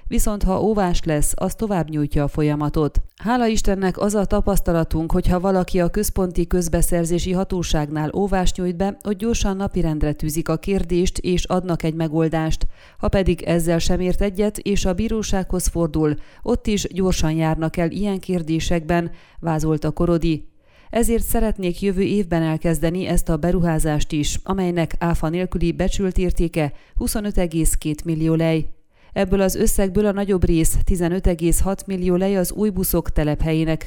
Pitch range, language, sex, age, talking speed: 160-195 Hz, Hungarian, female, 30-49, 150 wpm